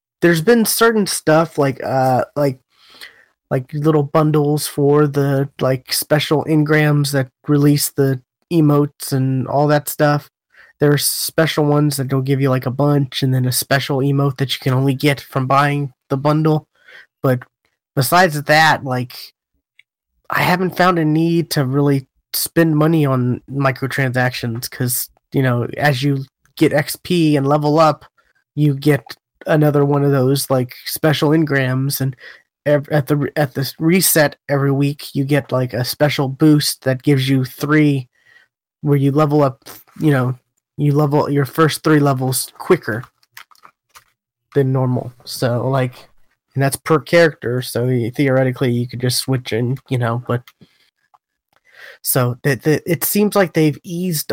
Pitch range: 130-150 Hz